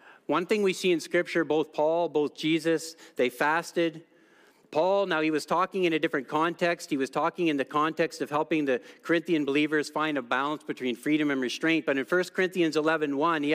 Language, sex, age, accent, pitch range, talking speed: English, male, 50-69, American, 135-165 Hz, 200 wpm